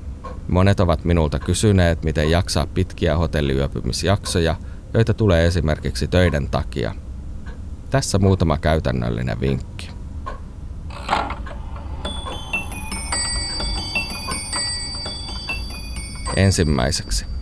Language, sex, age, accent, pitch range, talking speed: Finnish, male, 30-49, native, 75-95 Hz, 60 wpm